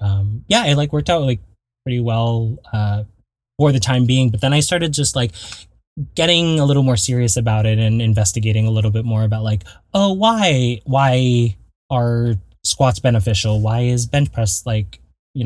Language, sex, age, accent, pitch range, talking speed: English, male, 10-29, American, 105-130 Hz, 185 wpm